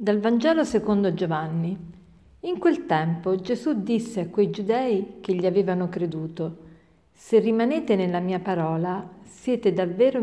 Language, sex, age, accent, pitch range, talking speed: Italian, female, 50-69, native, 180-220 Hz, 135 wpm